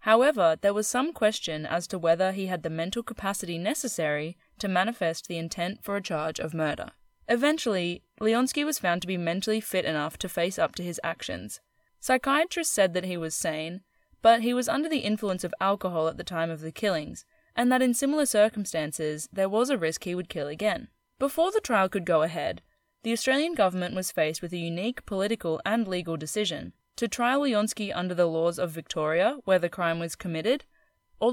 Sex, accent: female, Australian